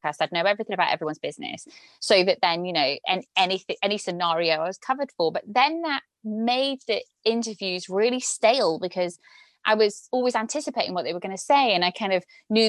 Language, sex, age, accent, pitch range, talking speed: English, female, 20-39, British, 185-255 Hz, 205 wpm